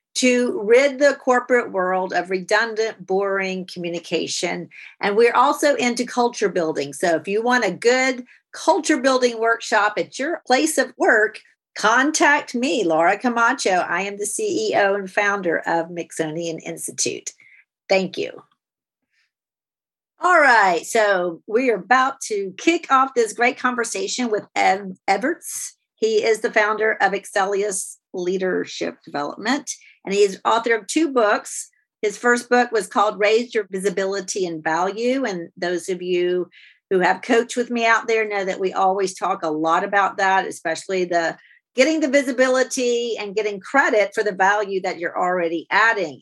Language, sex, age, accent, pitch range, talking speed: English, female, 50-69, American, 190-260 Hz, 155 wpm